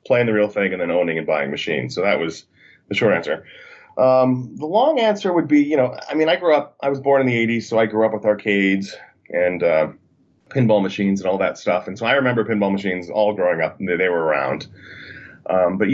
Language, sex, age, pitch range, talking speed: English, male, 30-49, 100-125 Hz, 245 wpm